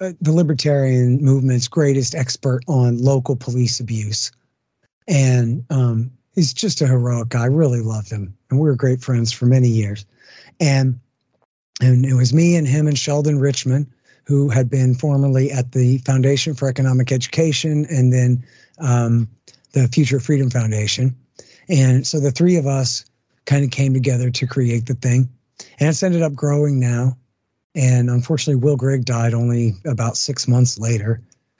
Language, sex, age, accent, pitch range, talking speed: English, male, 50-69, American, 120-140 Hz, 160 wpm